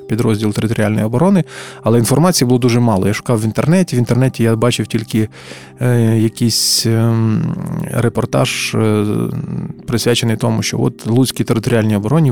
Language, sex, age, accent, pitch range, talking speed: Ukrainian, male, 20-39, native, 115-135 Hz, 140 wpm